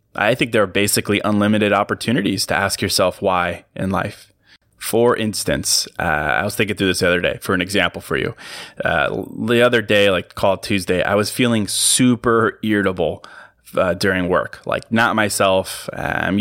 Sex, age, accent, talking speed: male, 20-39, American, 175 wpm